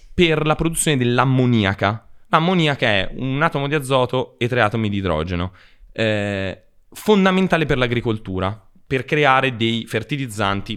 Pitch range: 100-140 Hz